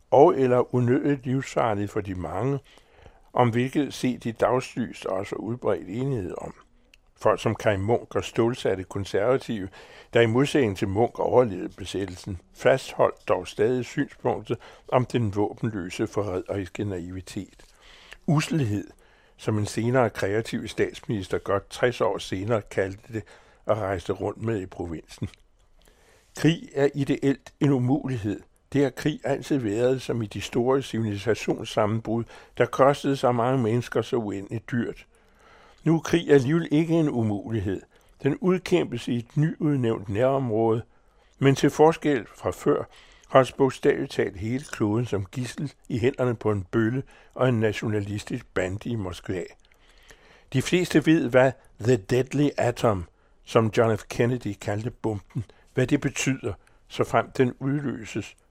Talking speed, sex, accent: 140 wpm, male, American